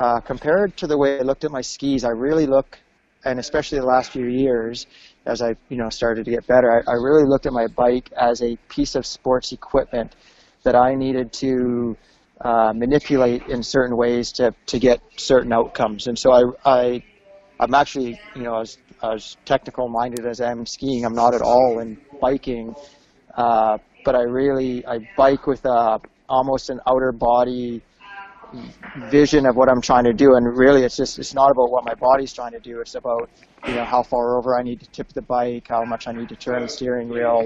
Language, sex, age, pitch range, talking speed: English, male, 30-49, 120-135 Hz, 205 wpm